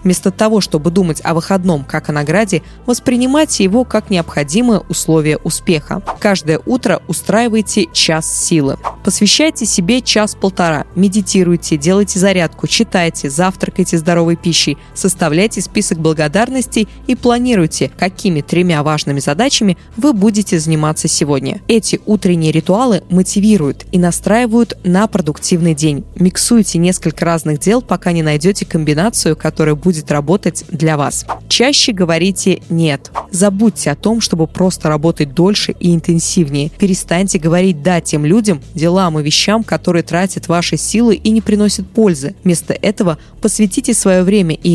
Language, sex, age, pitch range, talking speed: Russian, female, 20-39, 160-205 Hz, 135 wpm